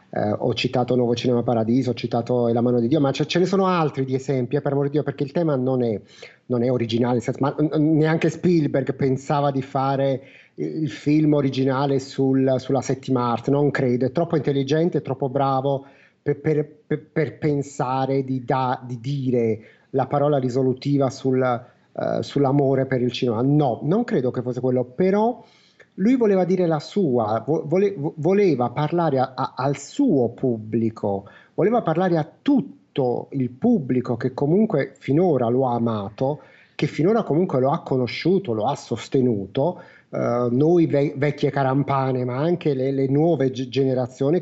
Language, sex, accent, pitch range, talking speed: Italian, male, native, 130-155 Hz, 165 wpm